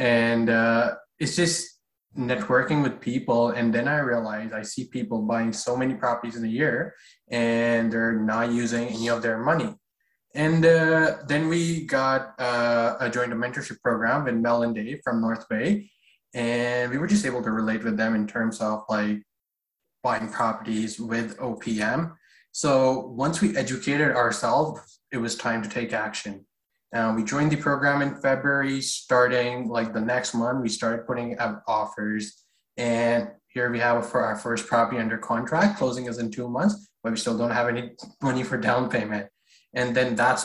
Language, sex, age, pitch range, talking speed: English, male, 20-39, 115-130 Hz, 180 wpm